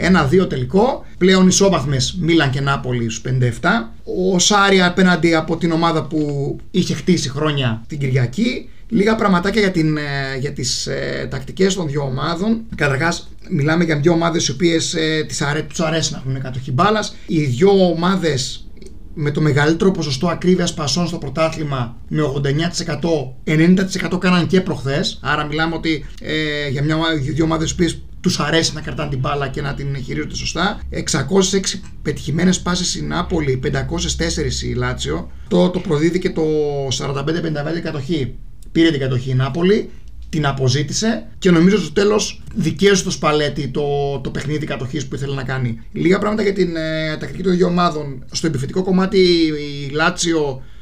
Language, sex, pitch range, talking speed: Greek, male, 140-175 Hz, 165 wpm